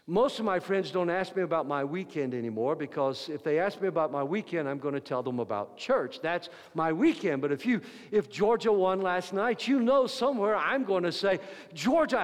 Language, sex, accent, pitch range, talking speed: English, male, American, 160-265 Hz, 220 wpm